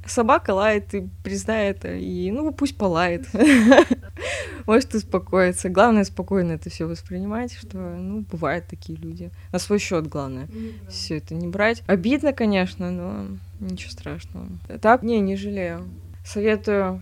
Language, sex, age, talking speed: Russian, female, 20-39, 140 wpm